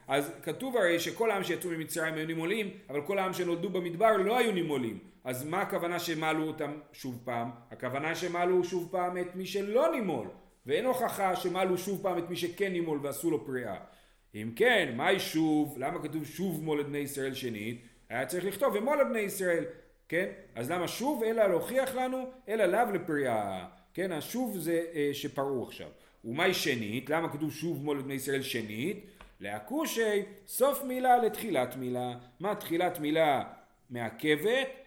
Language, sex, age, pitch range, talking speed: Hebrew, male, 40-59, 135-195 Hz, 155 wpm